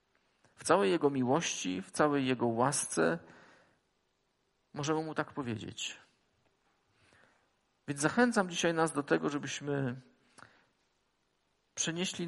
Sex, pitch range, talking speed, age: male, 115-155 Hz, 100 wpm, 40-59